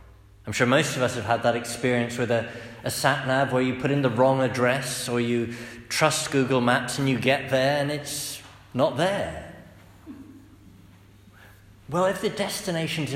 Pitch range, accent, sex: 100-140 Hz, British, male